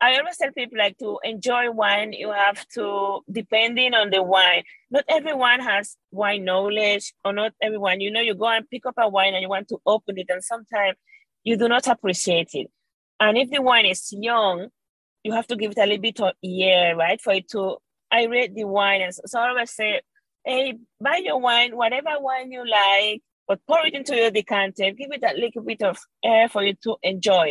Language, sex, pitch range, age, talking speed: English, female, 200-255 Hz, 30-49, 220 wpm